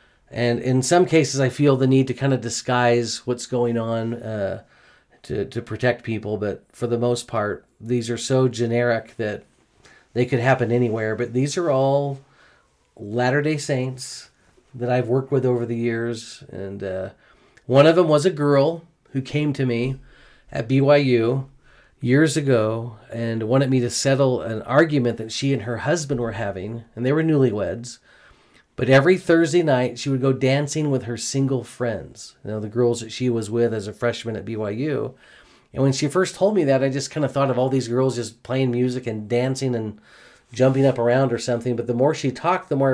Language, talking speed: English, 195 wpm